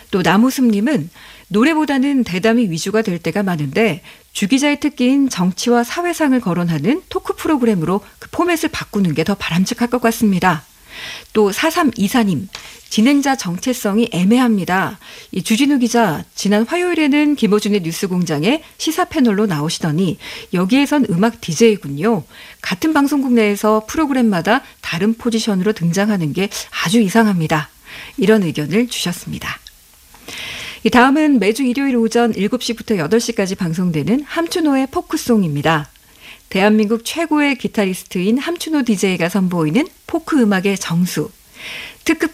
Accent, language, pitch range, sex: native, Korean, 190-270 Hz, female